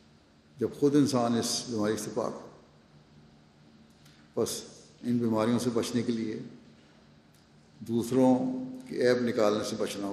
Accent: Indian